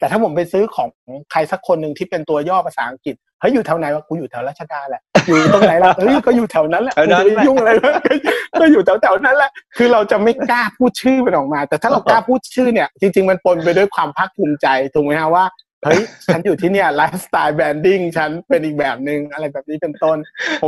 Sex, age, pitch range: male, 30-49, 150-195 Hz